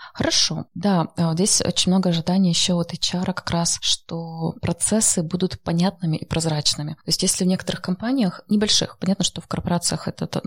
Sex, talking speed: female, 165 wpm